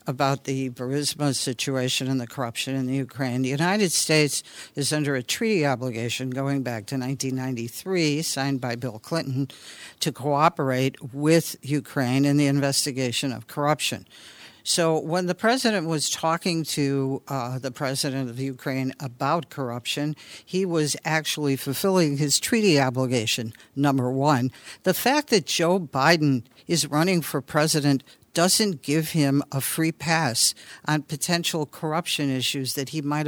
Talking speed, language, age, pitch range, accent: 145 wpm, English, 60-79, 135-165 Hz, American